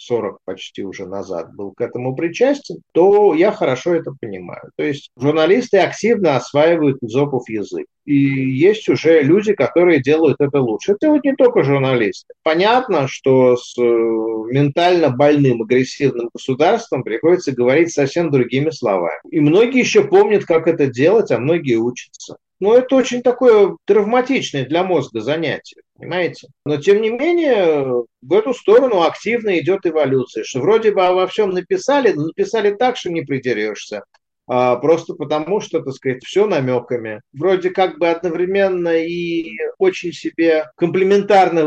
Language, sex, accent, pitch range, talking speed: Russian, male, native, 130-205 Hz, 150 wpm